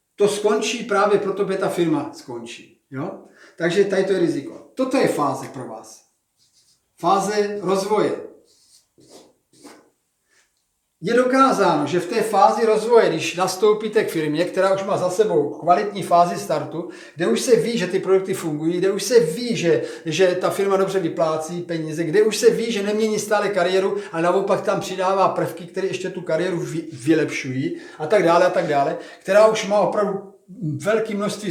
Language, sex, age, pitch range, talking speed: Czech, male, 40-59, 165-210 Hz, 170 wpm